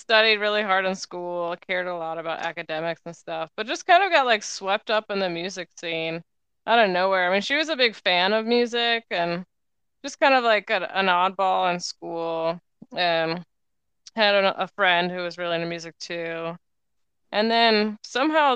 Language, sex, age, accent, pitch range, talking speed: English, female, 20-39, American, 170-210 Hz, 190 wpm